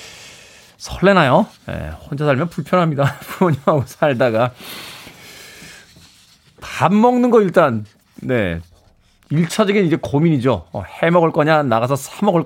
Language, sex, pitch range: Korean, male, 125-180 Hz